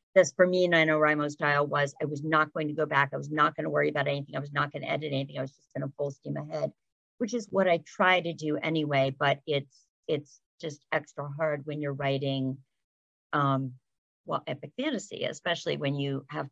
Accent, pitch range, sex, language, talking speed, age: American, 145-165 Hz, female, English, 210 wpm, 50-69